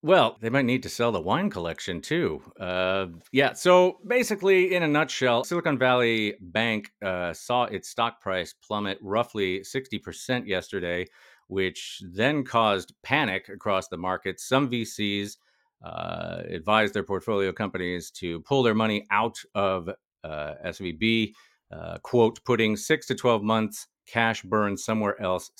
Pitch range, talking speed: 95-130 Hz, 145 wpm